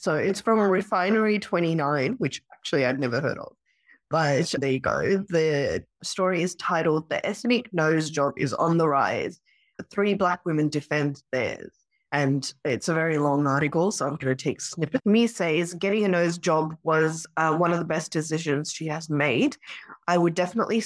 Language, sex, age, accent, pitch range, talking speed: English, female, 20-39, Australian, 150-185 Hz, 180 wpm